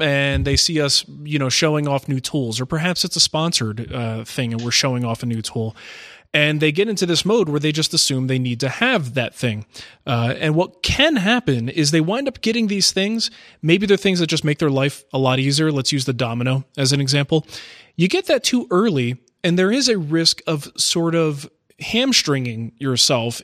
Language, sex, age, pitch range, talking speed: English, male, 20-39, 130-170 Hz, 220 wpm